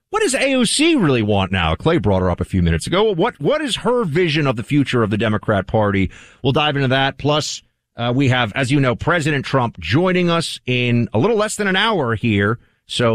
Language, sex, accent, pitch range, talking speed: English, male, American, 120-185 Hz, 230 wpm